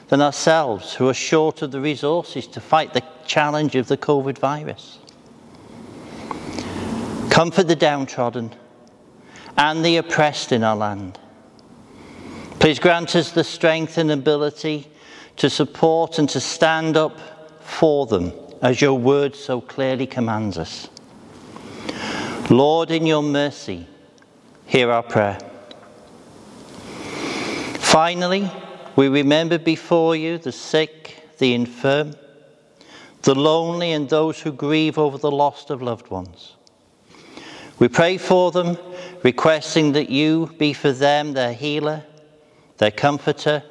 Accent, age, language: British, 60-79, English